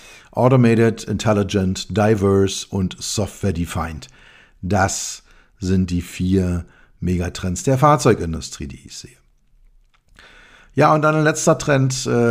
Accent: German